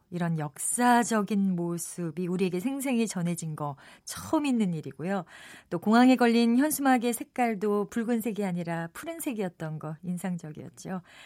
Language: Korean